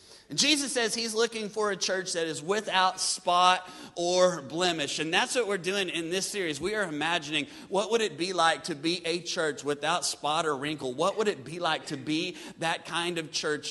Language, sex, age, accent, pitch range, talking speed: English, male, 30-49, American, 155-185 Hz, 210 wpm